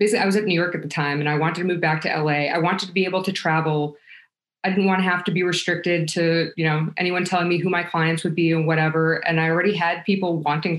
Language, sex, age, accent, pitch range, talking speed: English, female, 20-39, American, 160-190 Hz, 285 wpm